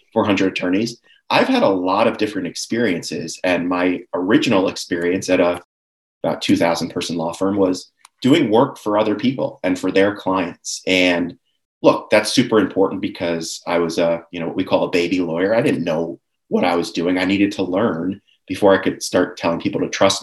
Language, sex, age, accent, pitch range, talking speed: English, male, 30-49, American, 90-105 Hz, 195 wpm